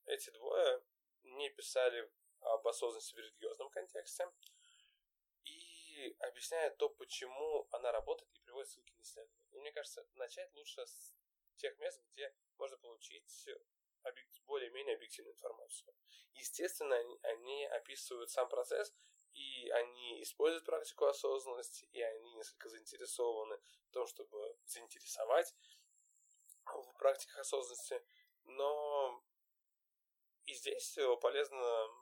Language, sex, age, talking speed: Russian, male, 10-29, 110 wpm